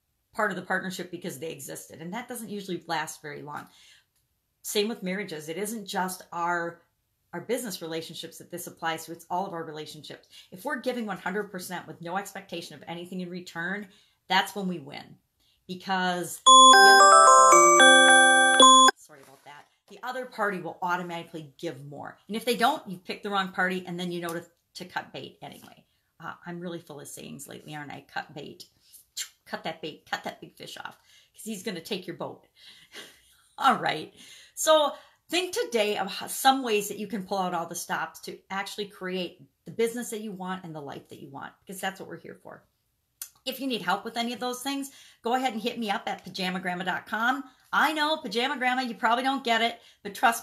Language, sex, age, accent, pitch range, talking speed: English, female, 40-59, American, 170-225 Hz, 200 wpm